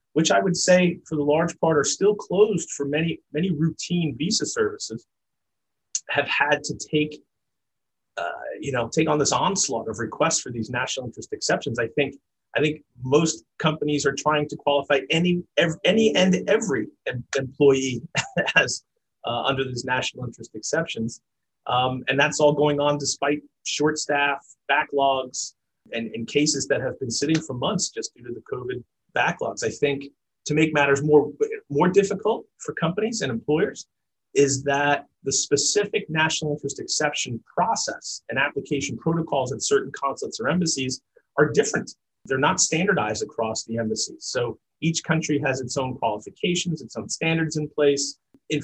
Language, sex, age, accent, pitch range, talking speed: English, male, 30-49, American, 135-170 Hz, 160 wpm